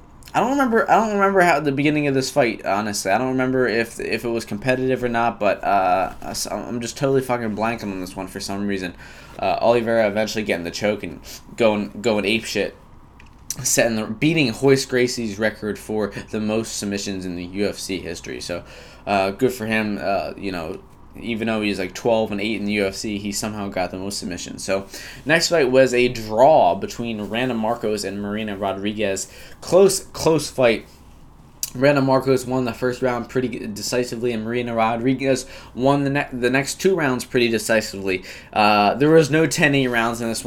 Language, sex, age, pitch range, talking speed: English, male, 10-29, 105-130 Hz, 190 wpm